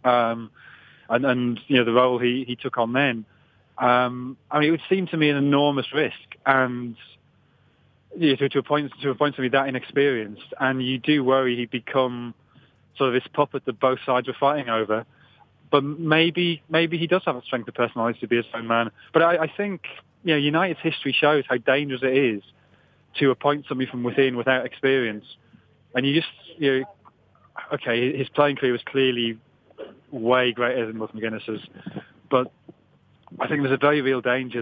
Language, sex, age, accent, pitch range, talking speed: English, male, 30-49, British, 120-140 Hz, 180 wpm